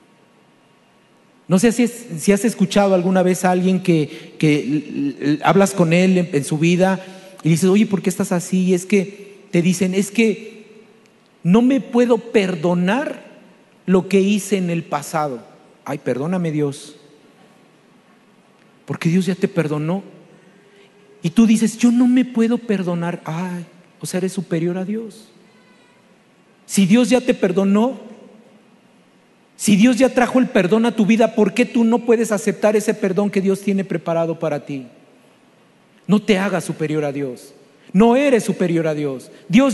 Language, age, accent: Spanish, 50-69, Mexican